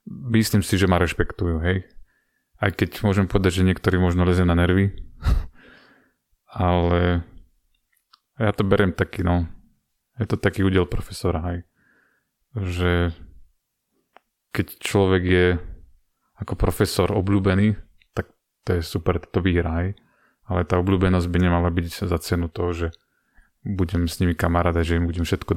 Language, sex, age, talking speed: Slovak, male, 30-49, 140 wpm